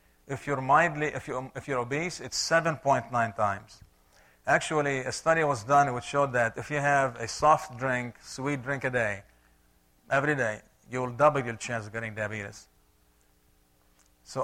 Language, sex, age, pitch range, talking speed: English, male, 50-69, 110-145 Hz, 150 wpm